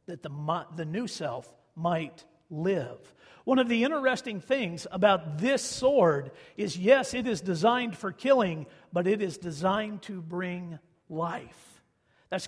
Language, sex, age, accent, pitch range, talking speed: English, male, 50-69, American, 170-225 Hz, 145 wpm